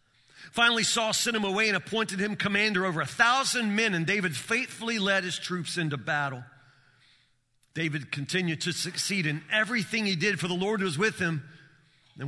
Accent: American